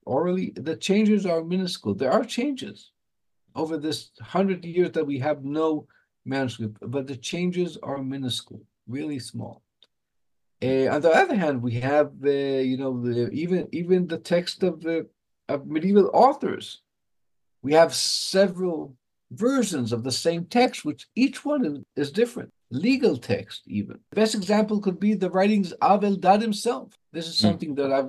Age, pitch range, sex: 50-69, 135-185 Hz, male